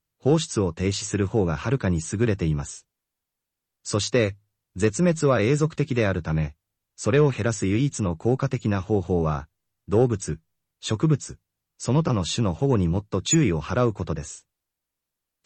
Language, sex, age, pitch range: Japanese, male, 30-49, 85-130 Hz